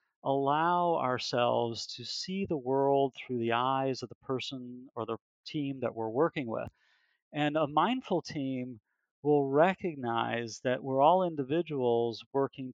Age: 40-59